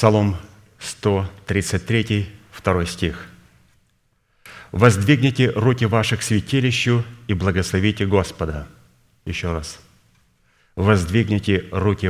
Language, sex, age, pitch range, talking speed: Russian, male, 40-59, 95-115 Hz, 75 wpm